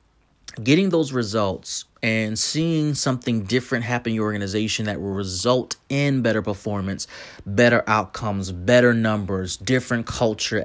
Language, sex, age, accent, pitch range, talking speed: English, male, 30-49, American, 105-130 Hz, 130 wpm